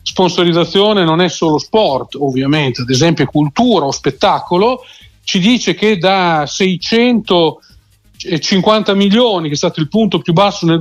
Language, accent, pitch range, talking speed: Italian, native, 160-210 Hz, 140 wpm